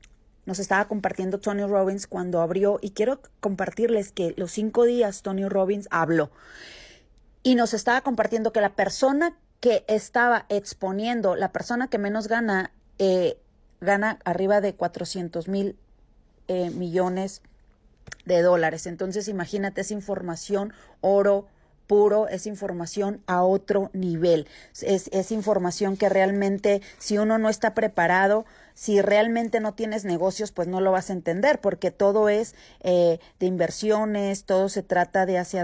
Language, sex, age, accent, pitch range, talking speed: Spanish, female, 30-49, Mexican, 190-225 Hz, 145 wpm